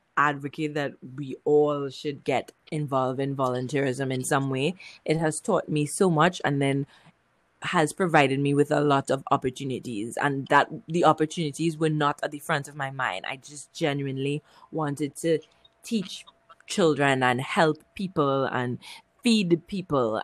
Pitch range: 135-155 Hz